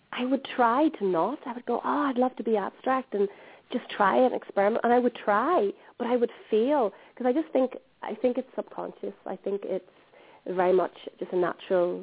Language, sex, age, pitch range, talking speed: English, female, 30-49, 160-220 Hz, 215 wpm